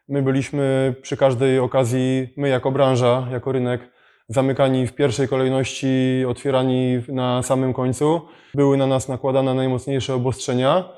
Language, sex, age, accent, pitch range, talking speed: Polish, male, 20-39, native, 130-145 Hz, 130 wpm